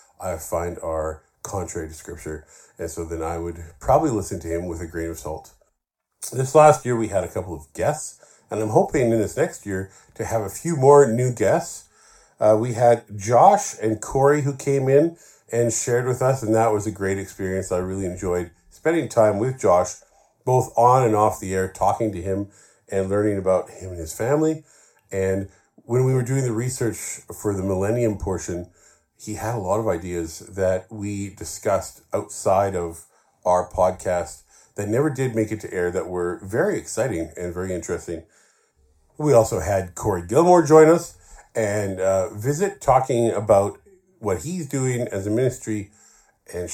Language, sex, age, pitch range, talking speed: English, male, 40-59, 90-125 Hz, 180 wpm